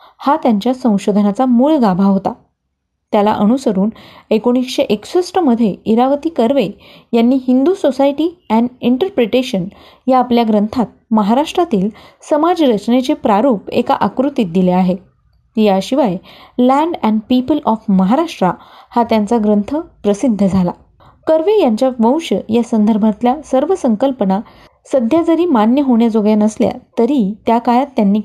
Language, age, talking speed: Marathi, 20-39, 120 wpm